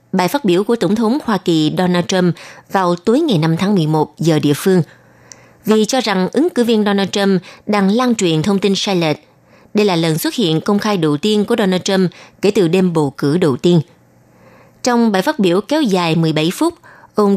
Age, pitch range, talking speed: 20-39, 170-225 Hz, 215 wpm